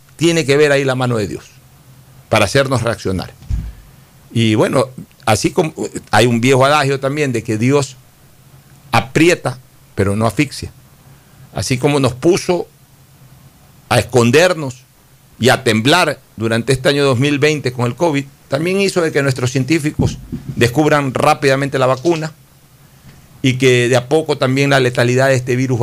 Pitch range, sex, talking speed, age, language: 125-140 Hz, male, 150 wpm, 50-69, Spanish